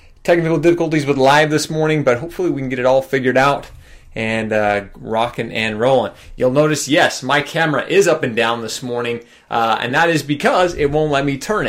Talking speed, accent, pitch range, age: 210 wpm, American, 130-165 Hz, 20-39